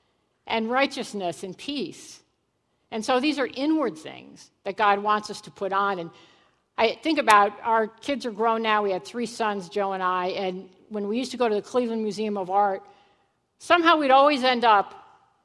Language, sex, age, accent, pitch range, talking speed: English, female, 50-69, American, 200-250 Hz, 195 wpm